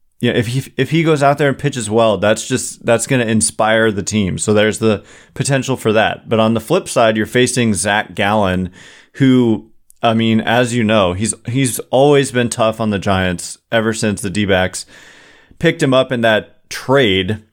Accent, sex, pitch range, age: American, male, 100-125 Hz, 30-49